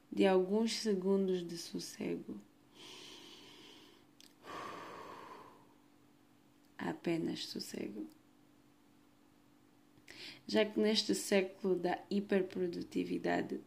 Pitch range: 185-210 Hz